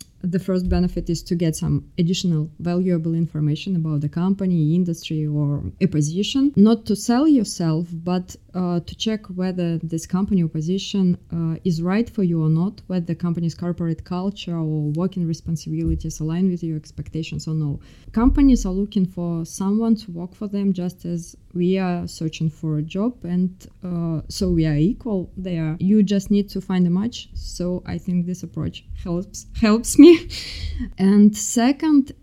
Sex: female